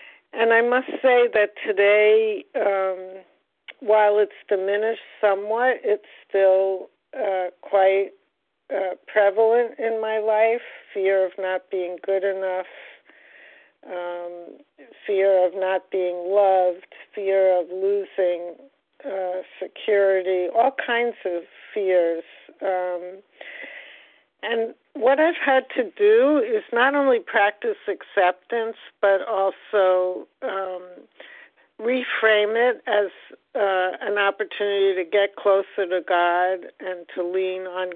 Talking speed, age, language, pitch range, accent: 110 wpm, 60-79, English, 185-220 Hz, American